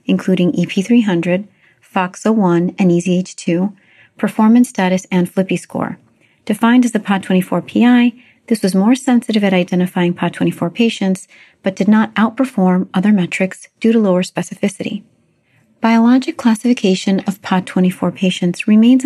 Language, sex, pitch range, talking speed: English, female, 180-225 Hz, 125 wpm